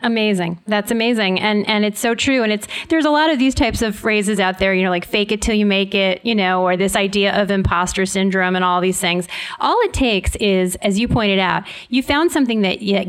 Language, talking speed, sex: English, 245 wpm, female